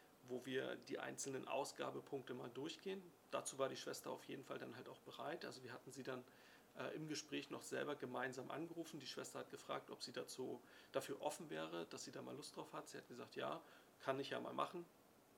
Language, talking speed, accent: German, 215 wpm, German